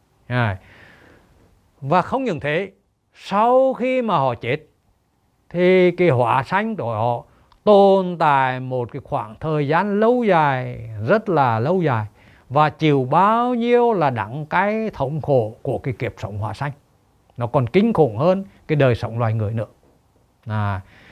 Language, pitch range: Vietnamese, 120-180 Hz